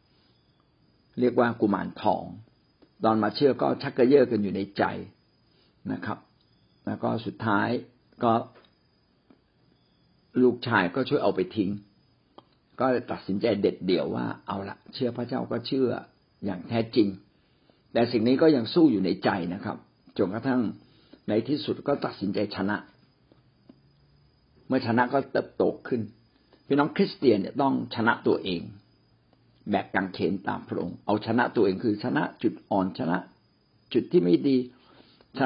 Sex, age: male, 60-79